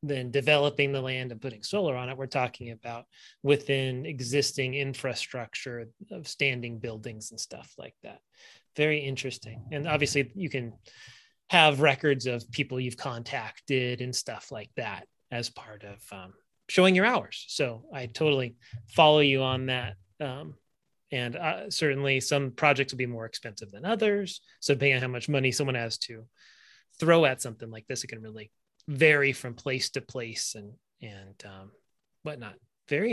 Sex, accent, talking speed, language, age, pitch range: male, American, 165 wpm, English, 30-49, 120-155 Hz